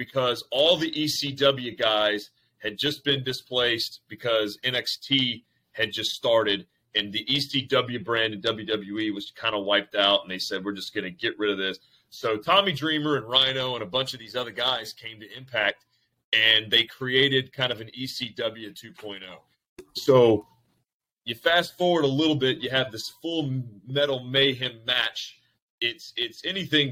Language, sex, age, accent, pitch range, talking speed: English, male, 30-49, American, 110-135 Hz, 165 wpm